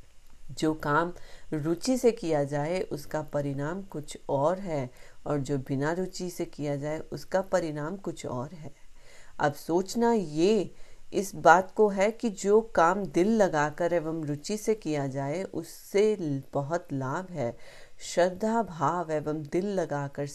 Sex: female